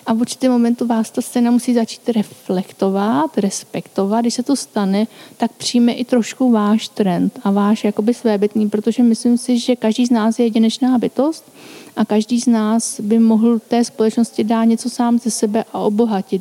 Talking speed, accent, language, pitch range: 175 wpm, native, Czech, 215-235 Hz